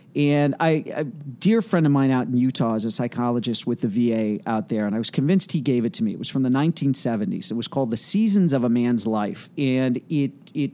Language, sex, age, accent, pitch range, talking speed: English, male, 40-59, American, 125-175 Hz, 240 wpm